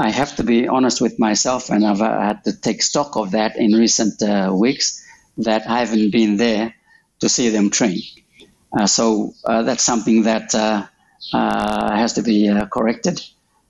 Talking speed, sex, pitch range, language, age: 180 wpm, male, 110-135 Hz, English, 60-79